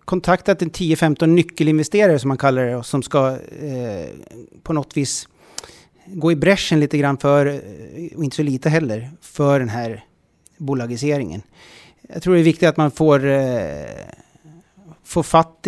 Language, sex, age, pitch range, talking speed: Swedish, male, 30-49, 135-165 Hz, 155 wpm